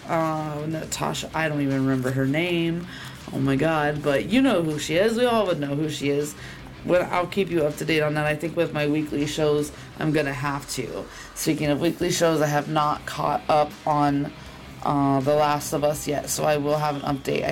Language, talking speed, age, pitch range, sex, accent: English, 225 wpm, 20-39, 145-175 Hz, female, American